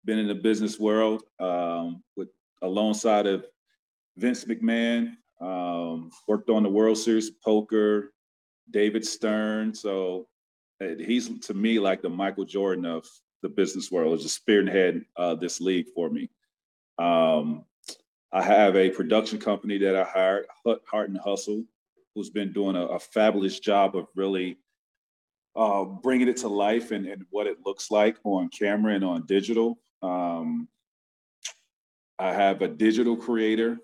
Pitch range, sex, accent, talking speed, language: 95-110 Hz, male, American, 150 wpm, English